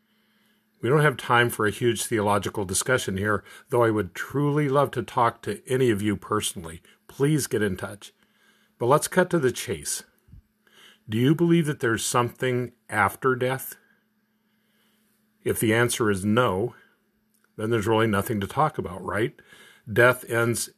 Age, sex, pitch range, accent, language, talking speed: 50-69, male, 105-145 Hz, American, English, 160 wpm